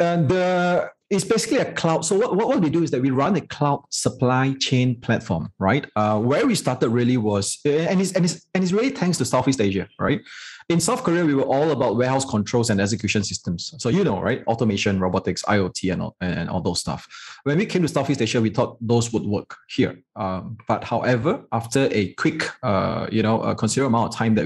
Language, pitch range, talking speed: English, 110-145 Hz, 220 wpm